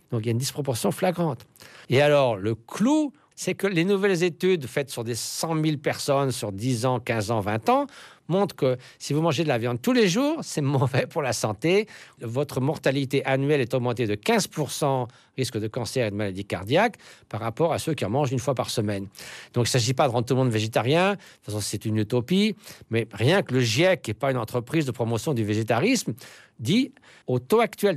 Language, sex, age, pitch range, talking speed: French, male, 50-69, 125-190 Hz, 225 wpm